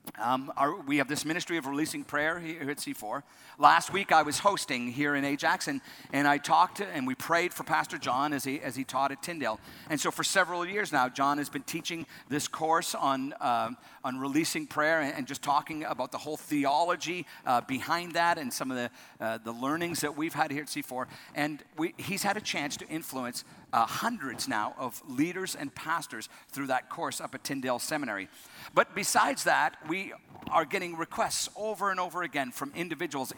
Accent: American